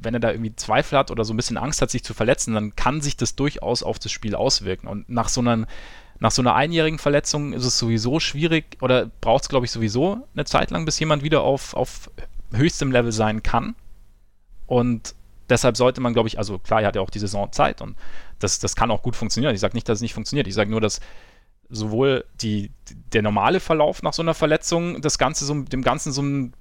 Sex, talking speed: male, 220 wpm